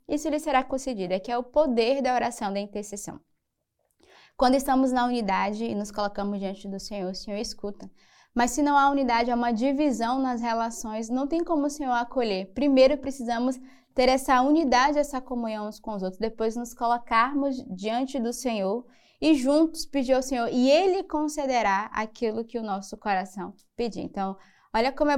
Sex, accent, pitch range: female, Brazilian, 215-275 Hz